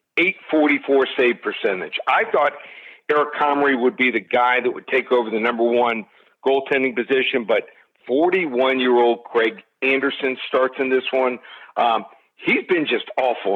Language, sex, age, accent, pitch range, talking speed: English, male, 50-69, American, 125-155 Hz, 155 wpm